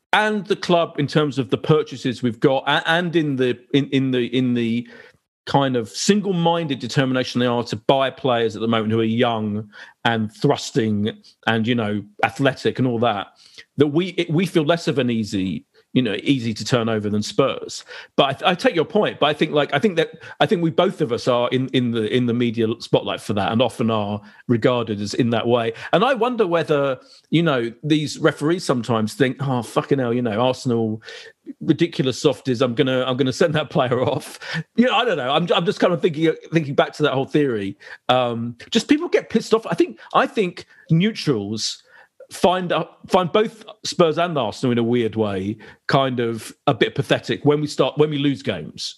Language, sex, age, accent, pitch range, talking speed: English, male, 40-59, British, 120-165 Hz, 215 wpm